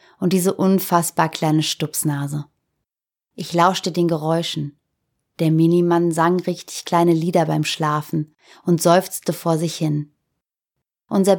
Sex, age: female, 30-49